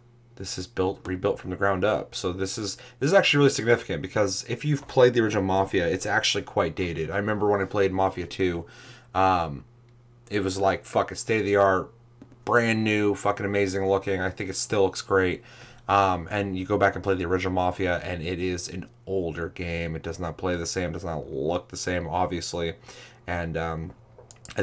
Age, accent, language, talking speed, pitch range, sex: 30-49, American, English, 205 wpm, 90-120 Hz, male